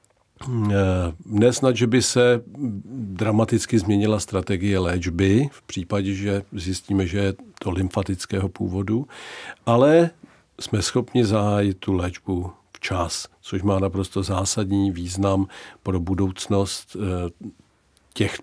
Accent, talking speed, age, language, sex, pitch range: native, 105 wpm, 50-69, Czech, male, 95-110 Hz